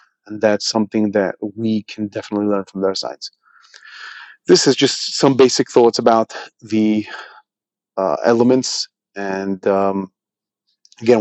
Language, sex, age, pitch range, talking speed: English, male, 30-49, 105-120 Hz, 130 wpm